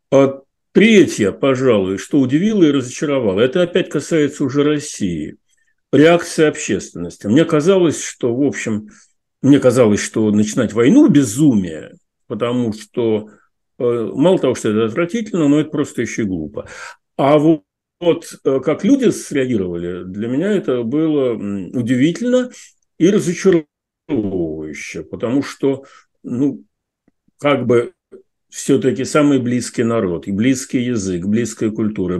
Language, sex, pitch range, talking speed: Russian, male, 110-160 Hz, 125 wpm